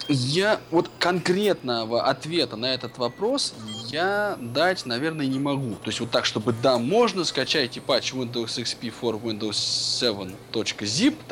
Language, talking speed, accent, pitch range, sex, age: Russian, 140 wpm, native, 120-165 Hz, male, 20-39